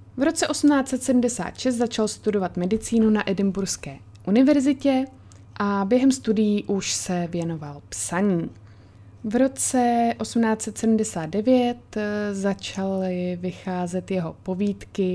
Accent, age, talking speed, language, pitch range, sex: native, 20-39, 90 wpm, Czech, 175-220 Hz, female